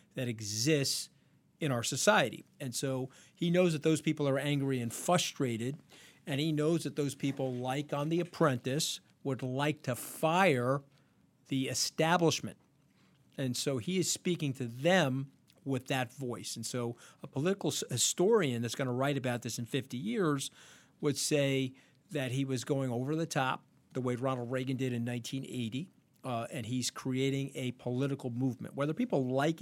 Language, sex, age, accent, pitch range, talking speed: English, male, 50-69, American, 125-150 Hz, 165 wpm